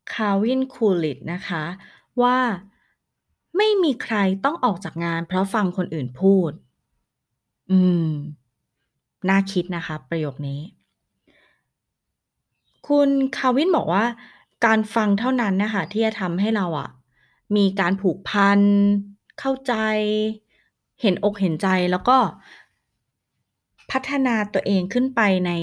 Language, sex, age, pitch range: Thai, female, 20-39, 165-225 Hz